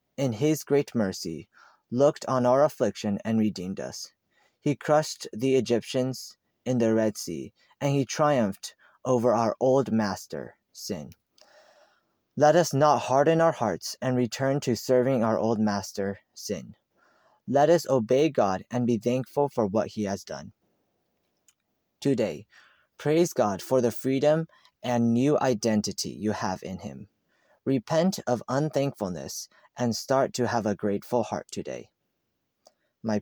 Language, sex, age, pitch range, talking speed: English, male, 20-39, 110-140 Hz, 140 wpm